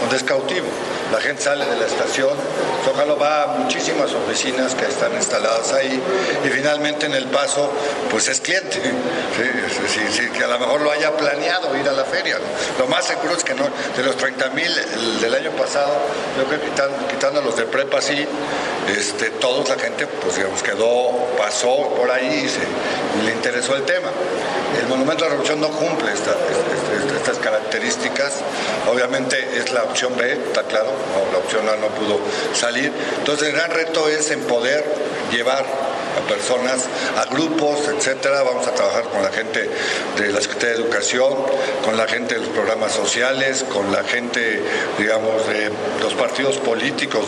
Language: Spanish